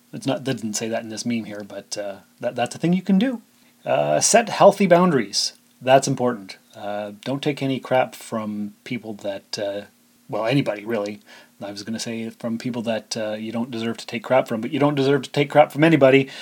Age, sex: 30-49, male